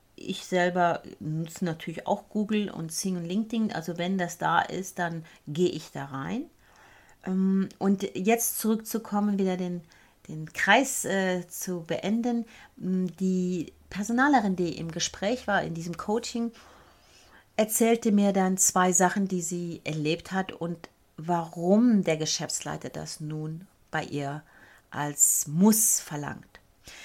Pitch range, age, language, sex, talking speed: 165-215 Hz, 30-49, German, female, 130 wpm